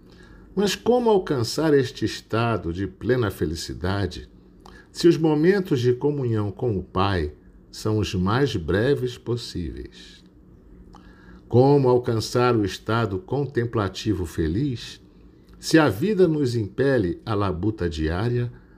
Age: 50-69